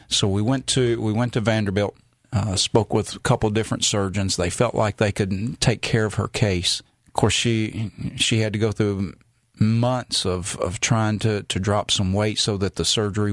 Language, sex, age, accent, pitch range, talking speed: English, male, 40-59, American, 95-115 Hz, 205 wpm